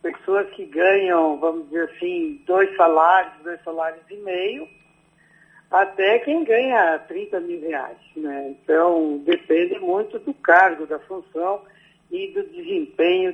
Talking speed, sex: 130 wpm, male